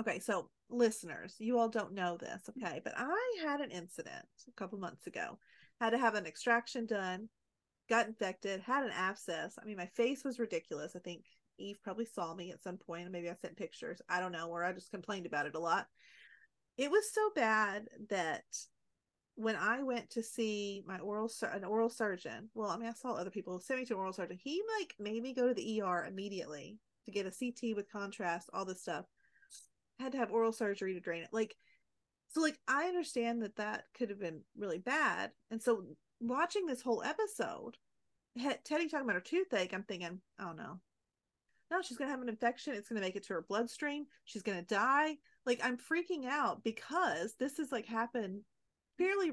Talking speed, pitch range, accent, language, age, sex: 205 wpm, 190-255 Hz, American, English, 30-49, female